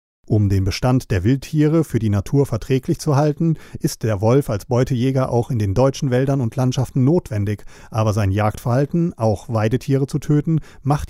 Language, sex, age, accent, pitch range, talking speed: German, male, 40-59, German, 105-140 Hz, 175 wpm